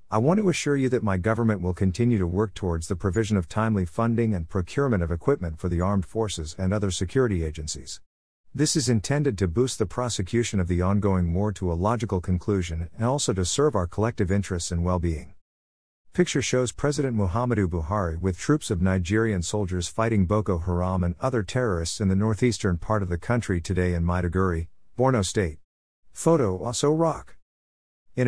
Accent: American